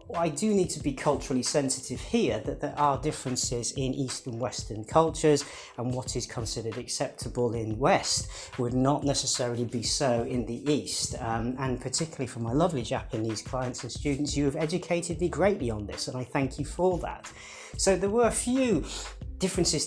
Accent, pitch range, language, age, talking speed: British, 120-155 Hz, English, 40-59, 185 wpm